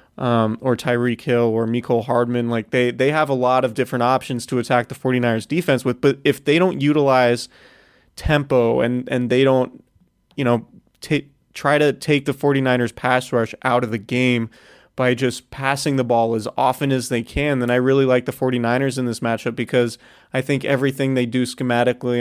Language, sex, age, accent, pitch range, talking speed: English, male, 20-39, American, 120-135 Hz, 195 wpm